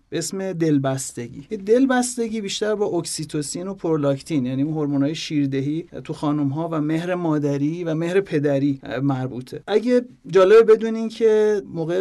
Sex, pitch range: male, 145-180 Hz